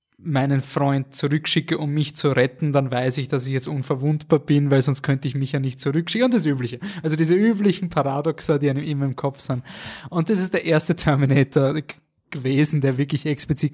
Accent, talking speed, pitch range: German, 205 wpm, 125-150 Hz